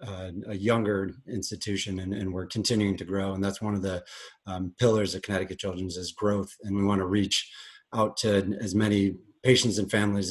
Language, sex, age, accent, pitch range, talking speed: English, male, 30-49, American, 95-105 Hz, 185 wpm